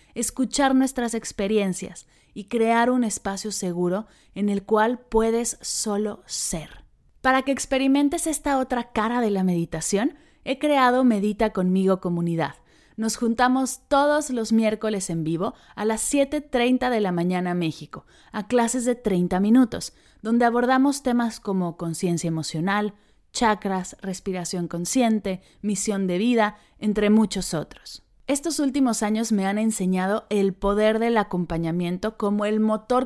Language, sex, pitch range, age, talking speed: Spanish, female, 190-235 Hz, 20-39, 135 wpm